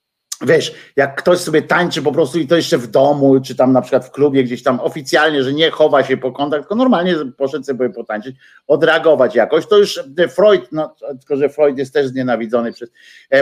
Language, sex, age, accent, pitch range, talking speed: Polish, male, 50-69, native, 130-170 Hz, 205 wpm